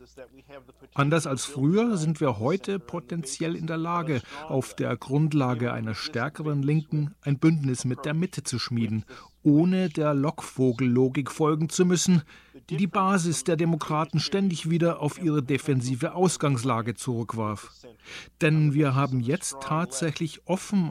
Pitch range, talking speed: 125-160 Hz, 135 wpm